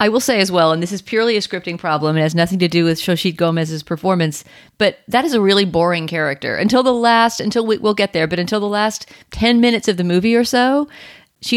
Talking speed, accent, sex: 250 wpm, American, female